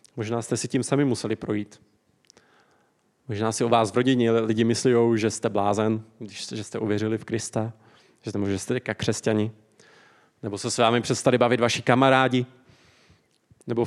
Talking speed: 160 wpm